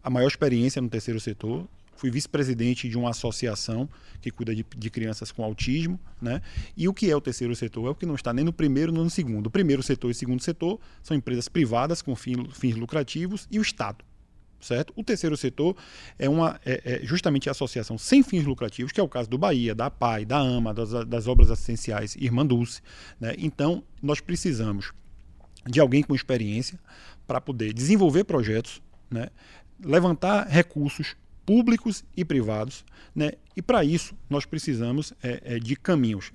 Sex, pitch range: male, 120-150 Hz